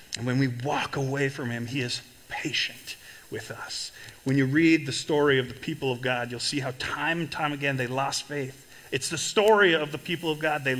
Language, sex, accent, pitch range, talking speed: English, male, American, 120-150 Hz, 230 wpm